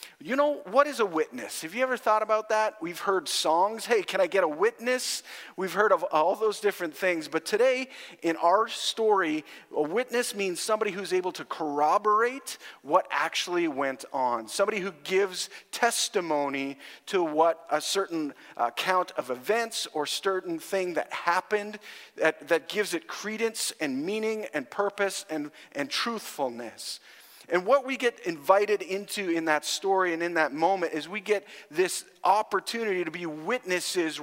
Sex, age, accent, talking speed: male, 40-59, American, 165 wpm